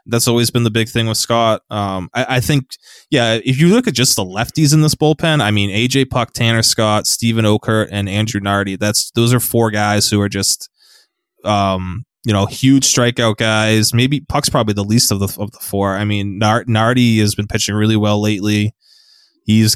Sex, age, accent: male, 20-39, American